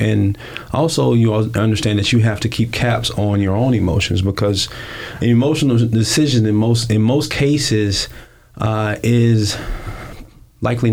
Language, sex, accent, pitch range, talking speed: English, male, American, 100-115 Hz, 145 wpm